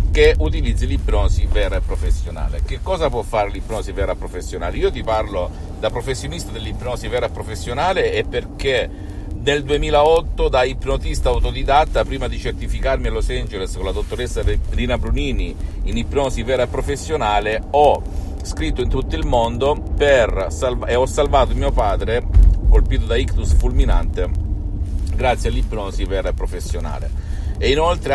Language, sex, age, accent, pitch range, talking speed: Italian, male, 50-69, native, 80-115 Hz, 150 wpm